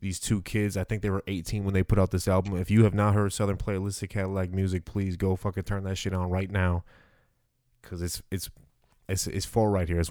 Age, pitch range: 20-39, 90-105 Hz